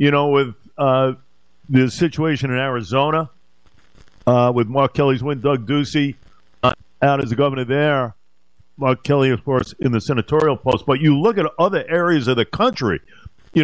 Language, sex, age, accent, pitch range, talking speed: English, male, 50-69, American, 120-150 Hz, 170 wpm